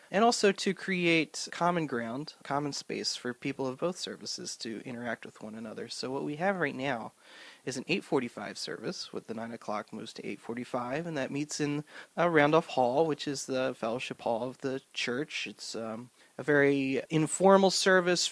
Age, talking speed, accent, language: 30-49, 185 wpm, American, English